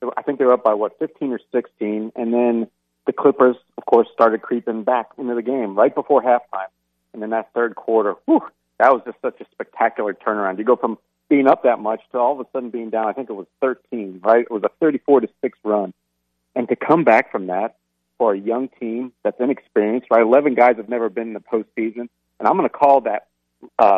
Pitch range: 95-125 Hz